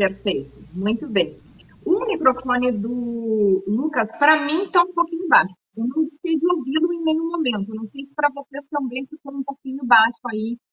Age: 40-59